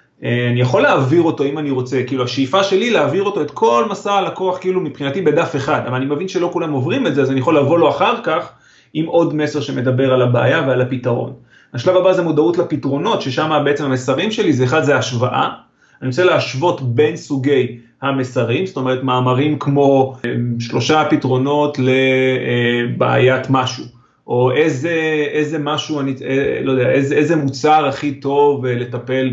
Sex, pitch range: male, 130-160 Hz